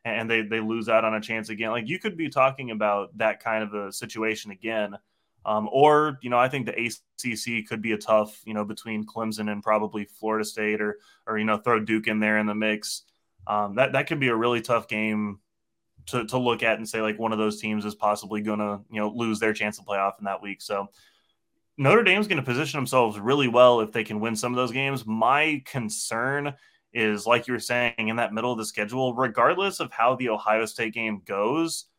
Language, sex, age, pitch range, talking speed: English, male, 20-39, 110-125 Hz, 240 wpm